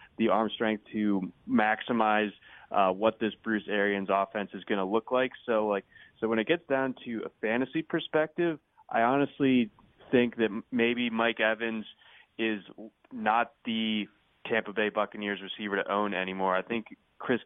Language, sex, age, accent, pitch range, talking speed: English, male, 20-39, American, 100-115 Hz, 160 wpm